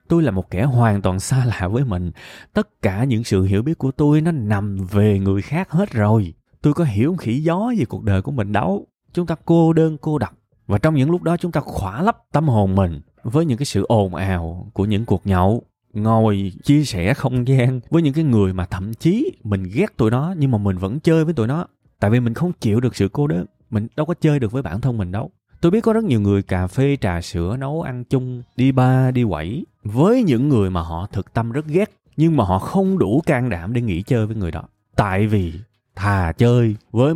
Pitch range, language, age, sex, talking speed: 100-150 Hz, Vietnamese, 20-39, male, 245 wpm